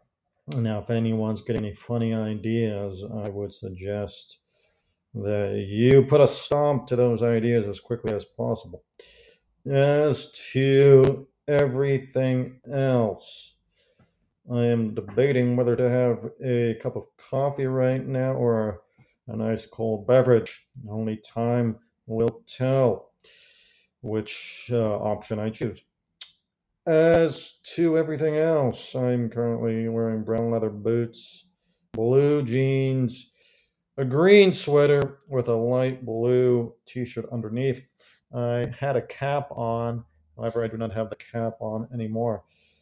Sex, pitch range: male, 110-130 Hz